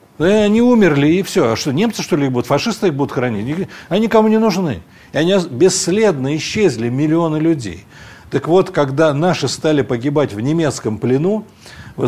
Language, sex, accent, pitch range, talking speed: Russian, male, native, 125-165 Hz, 180 wpm